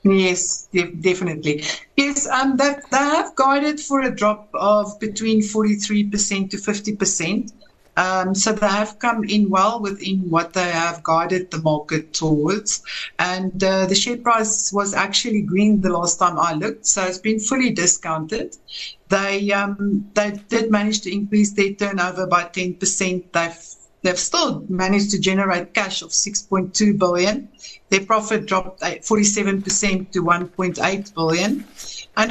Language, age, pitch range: English, 60-79, 180-215 Hz